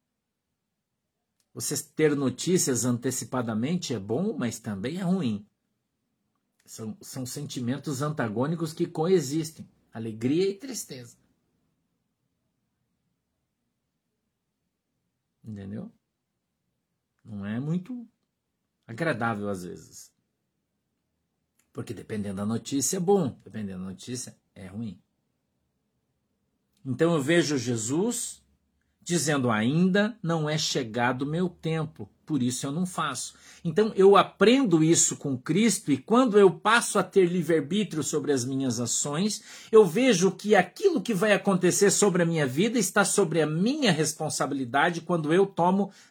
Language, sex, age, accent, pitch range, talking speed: Portuguese, male, 50-69, Brazilian, 125-195 Hz, 115 wpm